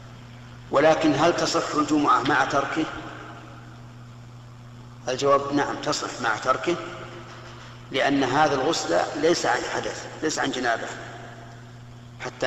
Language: Arabic